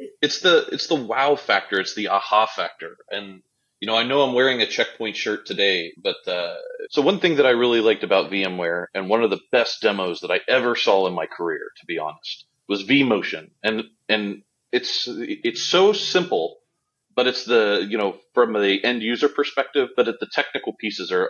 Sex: male